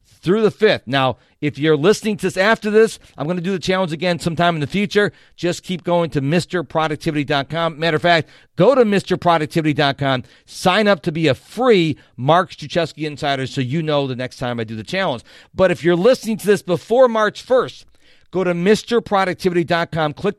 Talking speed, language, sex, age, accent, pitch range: 190 wpm, English, male, 50-69, American, 135-190 Hz